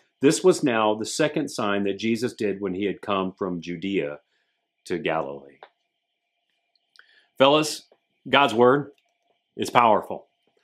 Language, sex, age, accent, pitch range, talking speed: English, male, 40-59, American, 120-175 Hz, 125 wpm